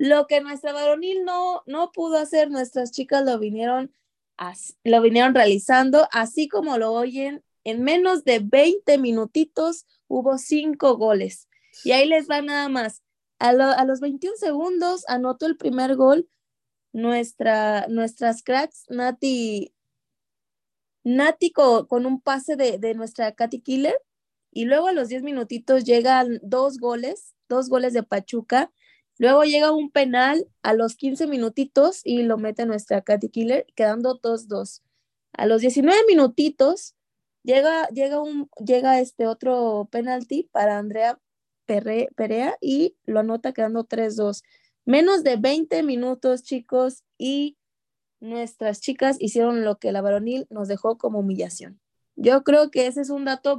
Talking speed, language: 140 wpm, Spanish